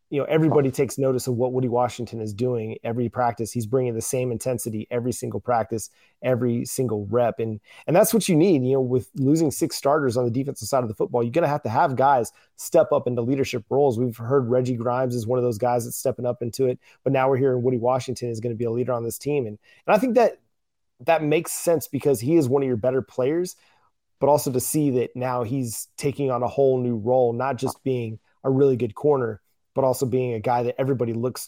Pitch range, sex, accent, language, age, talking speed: 120-135 Hz, male, American, English, 30-49, 245 wpm